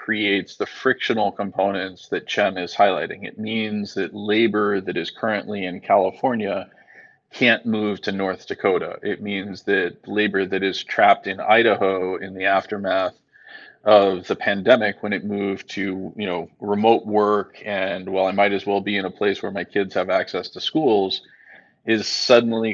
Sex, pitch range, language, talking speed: male, 95-110 Hz, English, 165 wpm